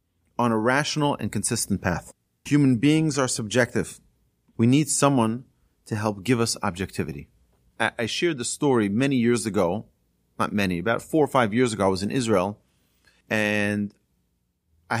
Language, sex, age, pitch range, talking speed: English, male, 40-59, 100-130 Hz, 155 wpm